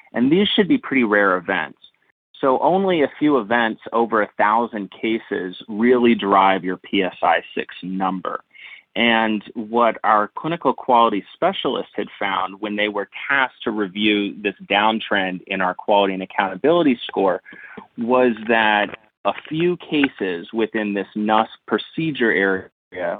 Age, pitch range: 30-49, 100-125 Hz